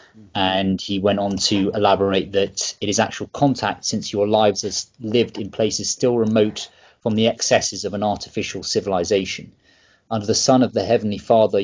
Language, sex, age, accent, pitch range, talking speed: English, male, 30-49, British, 100-115 Hz, 175 wpm